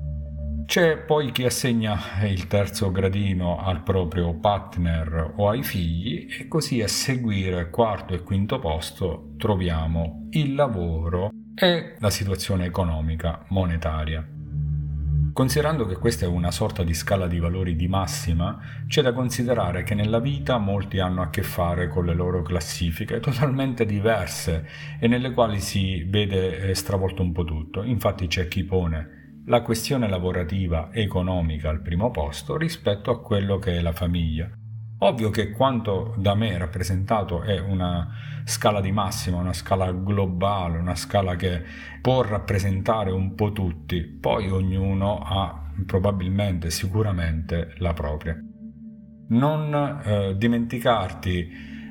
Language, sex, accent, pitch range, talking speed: Italian, male, native, 85-115 Hz, 135 wpm